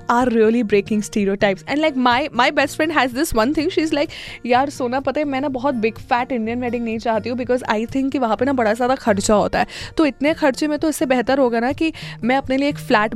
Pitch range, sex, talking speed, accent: 220-280 Hz, female, 270 wpm, native